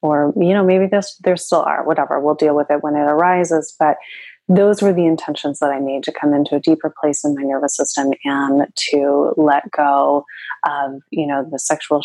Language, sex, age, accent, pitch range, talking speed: English, female, 30-49, American, 145-180 Hz, 210 wpm